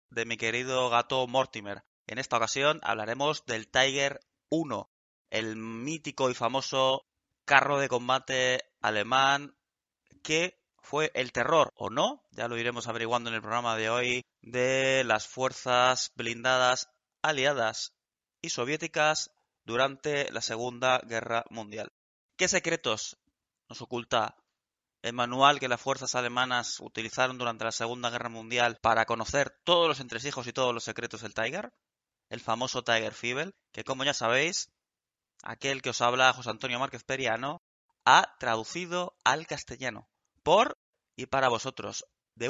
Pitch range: 115-140 Hz